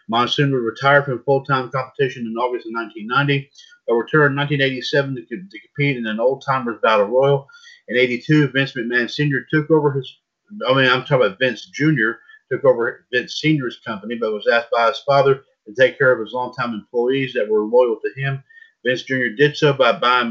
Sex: male